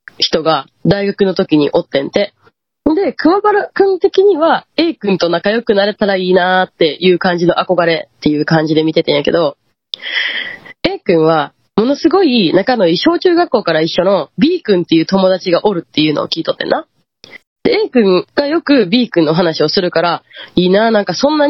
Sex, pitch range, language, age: female, 180-295 Hz, Japanese, 20-39